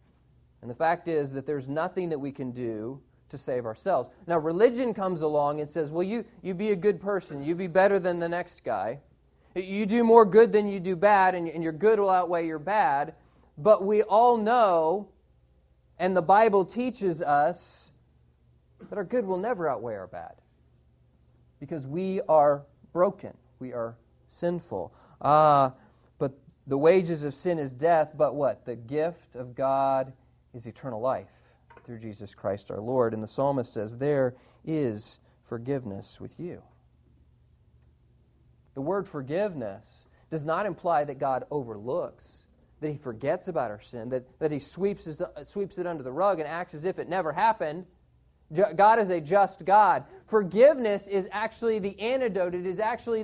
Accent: American